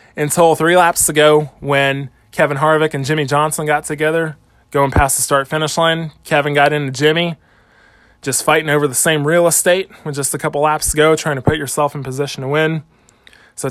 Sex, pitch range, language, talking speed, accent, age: male, 130-155 Hz, English, 195 wpm, American, 20-39